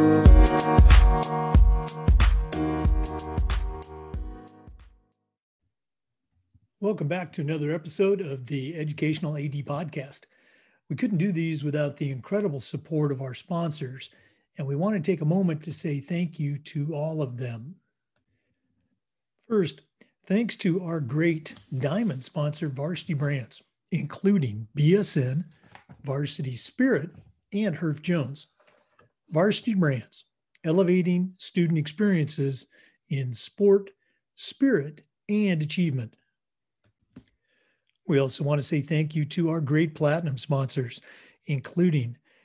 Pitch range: 135-175 Hz